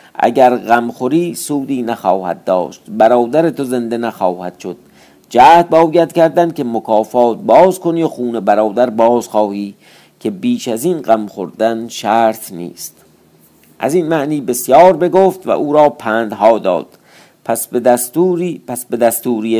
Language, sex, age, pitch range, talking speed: Persian, male, 50-69, 115-160 Hz, 145 wpm